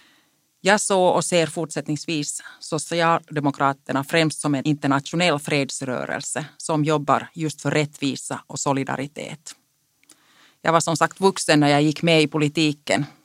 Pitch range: 140-165 Hz